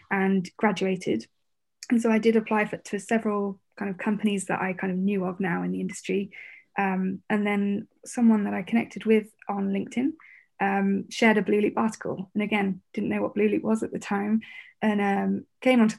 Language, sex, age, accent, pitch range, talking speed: English, female, 20-39, British, 195-215 Hz, 205 wpm